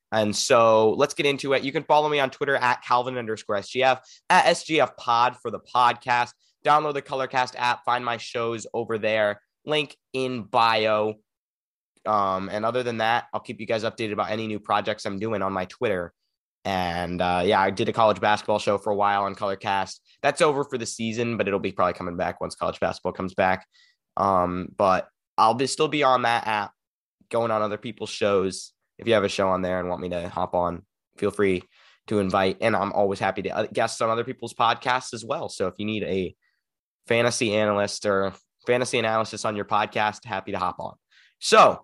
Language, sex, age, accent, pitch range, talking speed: English, male, 20-39, American, 105-135 Hz, 205 wpm